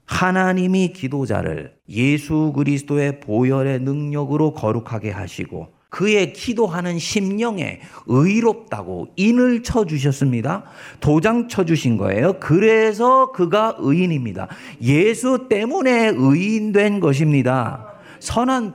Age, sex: 40-59, male